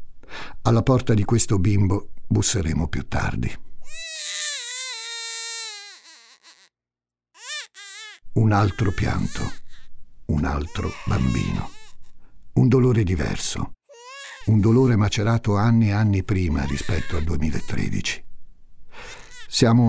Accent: native